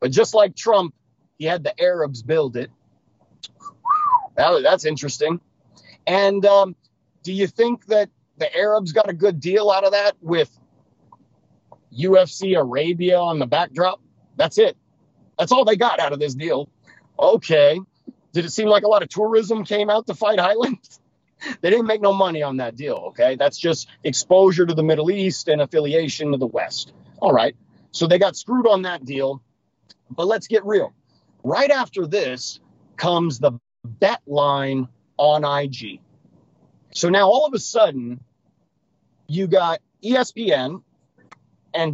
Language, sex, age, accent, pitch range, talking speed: English, male, 40-59, American, 150-210 Hz, 155 wpm